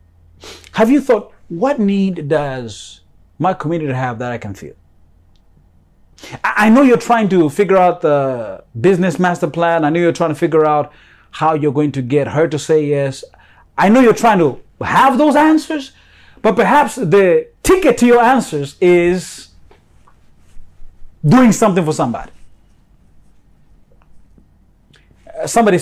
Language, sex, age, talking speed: English, male, 30-49, 140 wpm